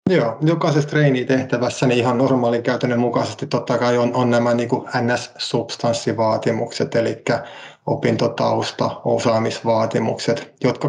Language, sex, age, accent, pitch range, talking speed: Finnish, male, 20-39, native, 115-125 Hz, 105 wpm